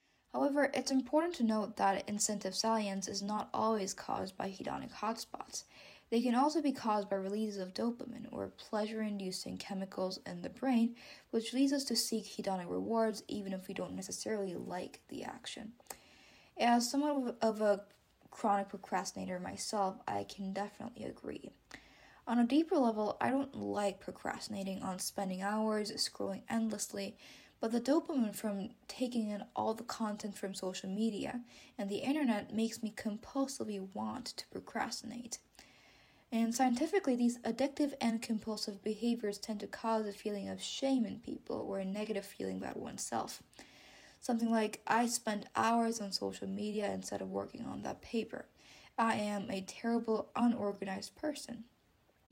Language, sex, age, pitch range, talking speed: English, female, 10-29, 200-240 Hz, 150 wpm